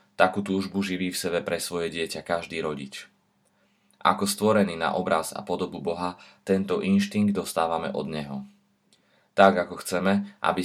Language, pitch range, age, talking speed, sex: Slovak, 85-100 Hz, 20-39, 145 wpm, male